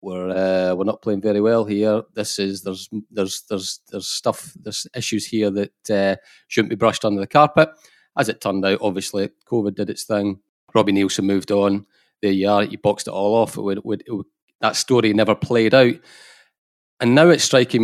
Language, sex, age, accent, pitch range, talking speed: English, male, 30-49, British, 100-110 Hz, 210 wpm